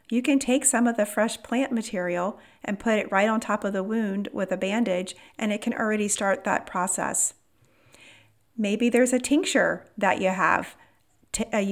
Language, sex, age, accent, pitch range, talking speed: English, female, 40-59, American, 180-225 Hz, 185 wpm